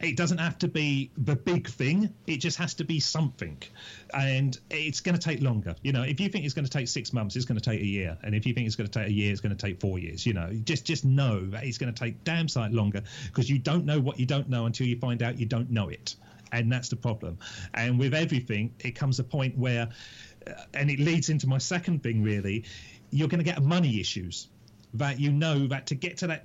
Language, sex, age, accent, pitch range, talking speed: English, male, 40-59, British, 115-145 Hz, 265 wpm